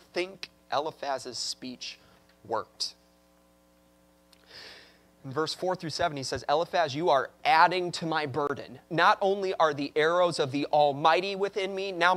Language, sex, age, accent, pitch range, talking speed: English, male, 30-49, American, 135-215 Hz, 145 wpm